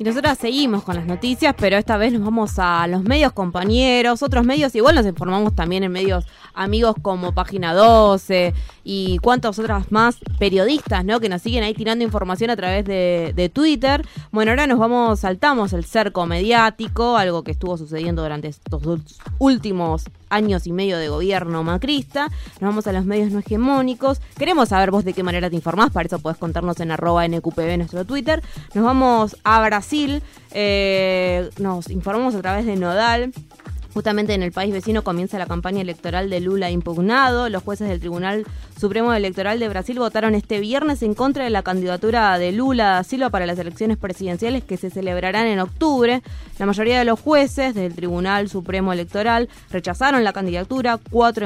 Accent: Argentinian